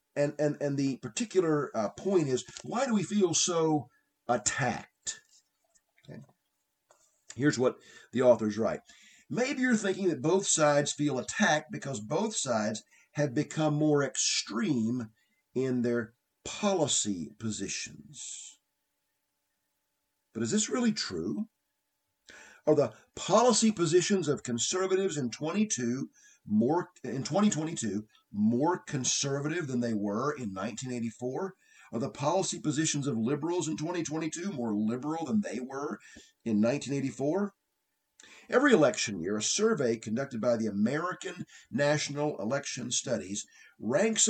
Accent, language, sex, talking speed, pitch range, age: American, English, male, 120 wpm, 120-190 Hz, 50-69